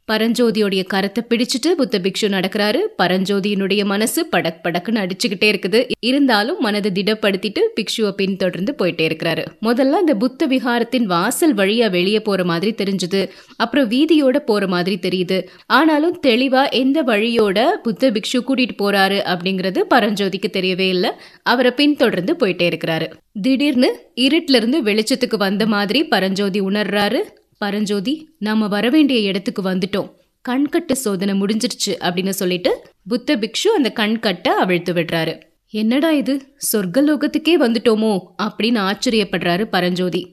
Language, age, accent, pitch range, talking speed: Tamil, 20-39, native, 195-250 Hz, 95 wpm